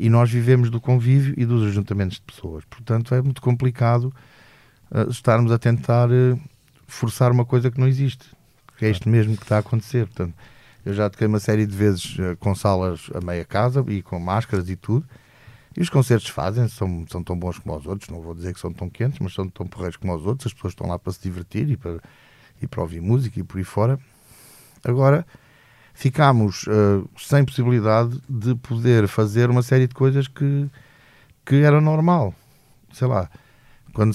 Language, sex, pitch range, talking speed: Portuguese, male, 100-130 Hz, 195 wpm